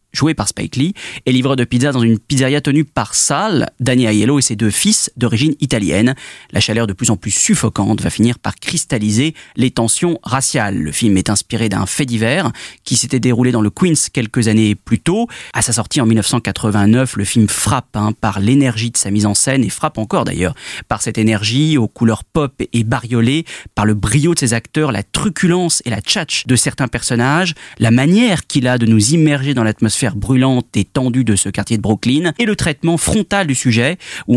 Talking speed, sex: 210 wpm, male